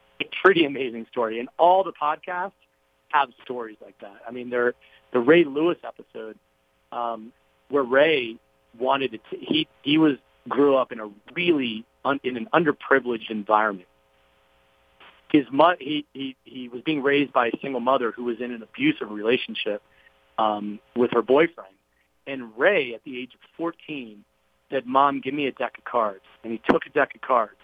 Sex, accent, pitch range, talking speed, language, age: male, American, 110-155 Hz, 180 wpm, English, 40-59